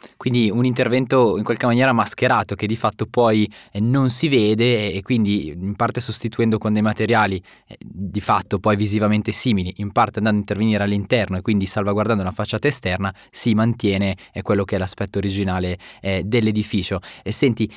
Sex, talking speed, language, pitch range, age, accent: male, 165 wpm, Italian, 105-120 Hz, 20-39, native